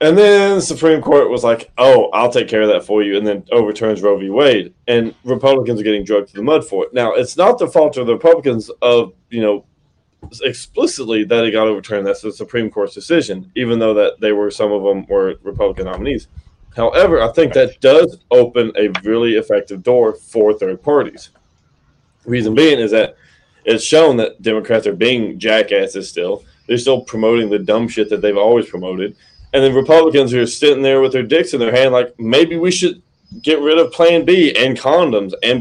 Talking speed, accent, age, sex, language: 205 wpm, American, 20-39, male, English